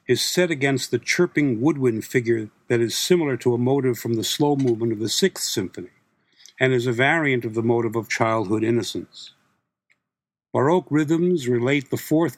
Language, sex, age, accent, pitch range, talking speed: English, male, 60-79, American, 120-145 Hz, 175 wpm